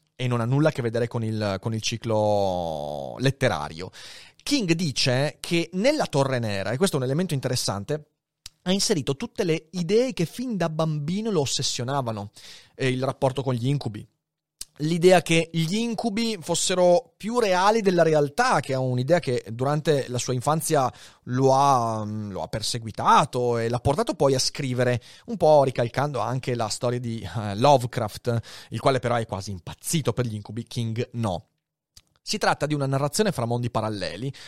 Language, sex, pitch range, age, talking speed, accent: Italian, male, 120-185 Hz, 30-49, 165 wpm, native